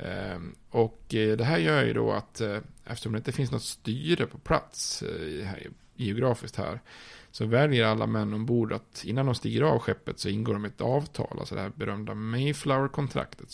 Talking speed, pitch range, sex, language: 170 wpm, 110-130 Hz, male, Swedish